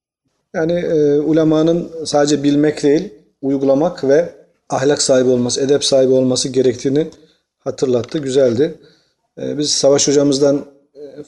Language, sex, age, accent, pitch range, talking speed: Turkish, male, 40-59, native, 130-155 Hz, 115 wpm